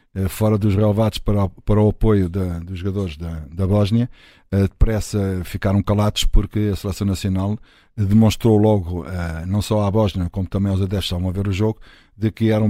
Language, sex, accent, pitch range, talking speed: Portuguese, male, Portuguese, 95-110 Hz, 165 wpm